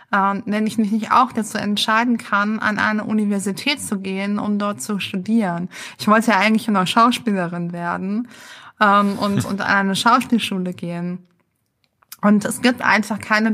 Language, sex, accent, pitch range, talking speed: German, female, German, 195-230 Hz, 165 wpm